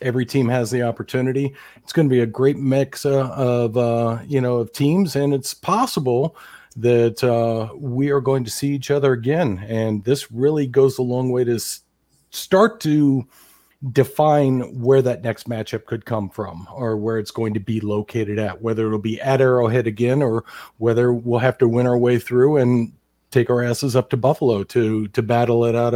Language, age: English, 40-59